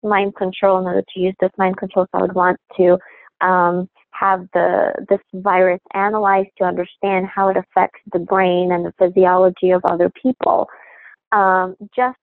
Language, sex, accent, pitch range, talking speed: English, female, American, 185-210 Hz, 170 wpm